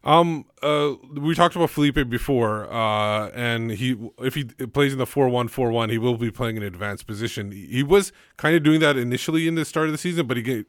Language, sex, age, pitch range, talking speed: English, male, 30-49, 110-135 Hz, 220 wpm